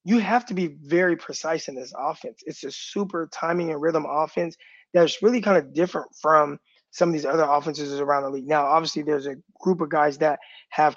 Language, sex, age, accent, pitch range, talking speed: English, male, 20-39, American, 150-185 Hz, 215 wpm